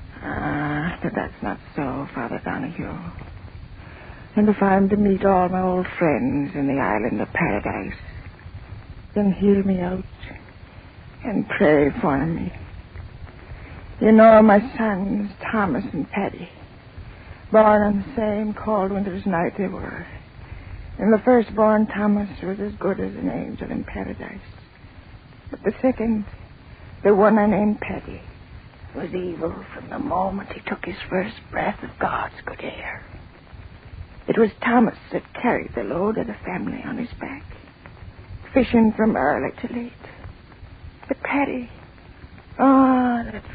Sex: female